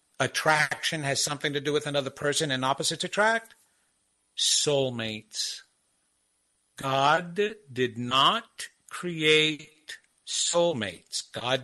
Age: 50-69